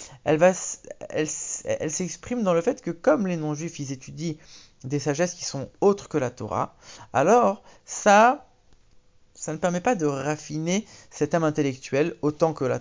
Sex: male